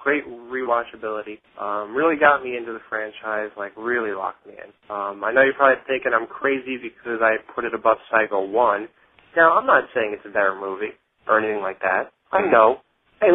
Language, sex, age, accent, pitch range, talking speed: English, male, 30-49, American, 120-160 Hz, 200 wpm